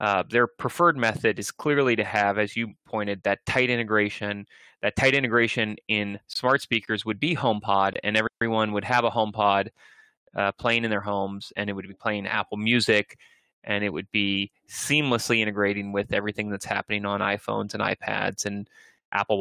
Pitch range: 105-125 Hz